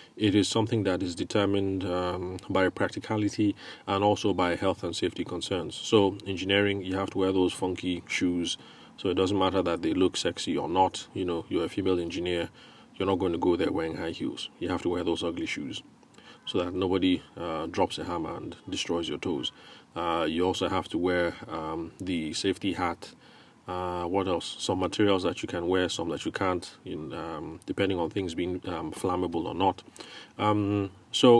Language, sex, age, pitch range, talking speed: English, male, 30-49, 90-100 Hz, 195 wpm